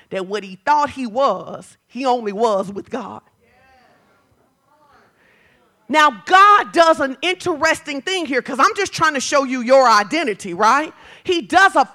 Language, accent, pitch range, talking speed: English, American, 225-320 Hz, 155 wpm